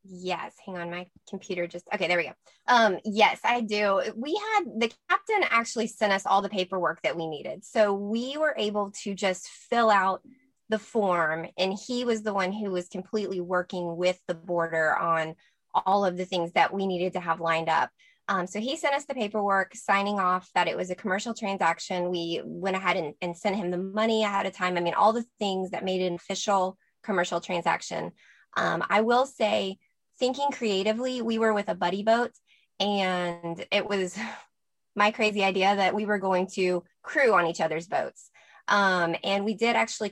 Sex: female